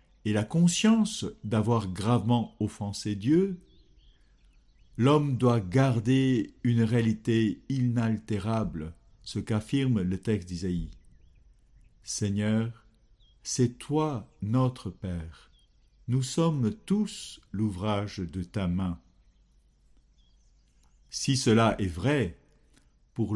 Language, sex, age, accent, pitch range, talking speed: French, male, 60-79, French, 100-145 Hz, 90 wpm